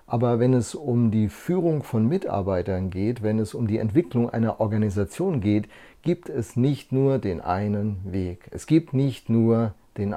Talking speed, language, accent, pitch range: 170 wpm, German, German, 105-135 Hz